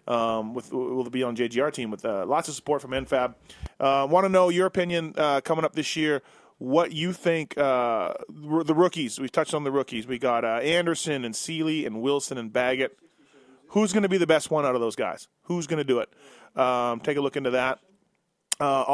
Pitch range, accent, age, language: 130-170 Hz, American, 30-49, English